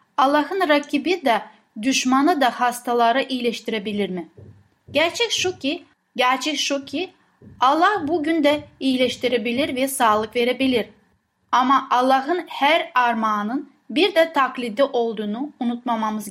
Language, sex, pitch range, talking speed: Turkish, female, 235-305 Hz, 110 wpm